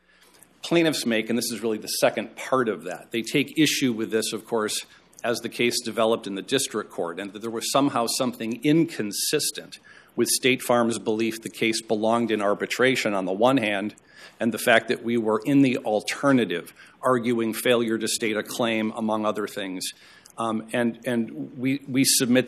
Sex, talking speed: male, 185 wpm